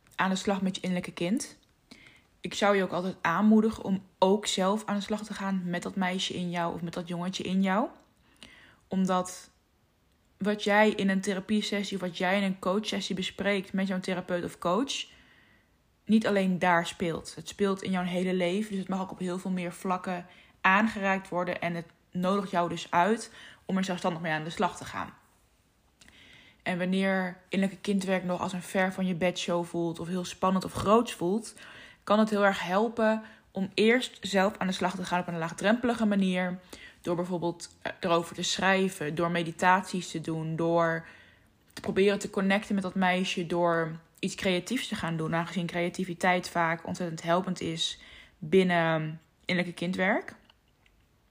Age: 20-39